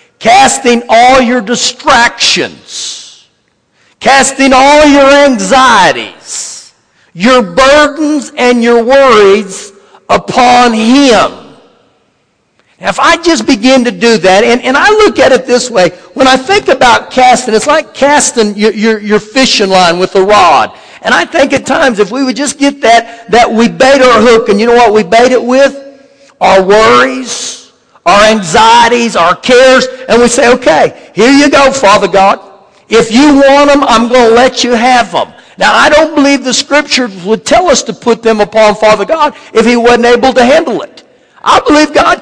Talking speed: 175 wpm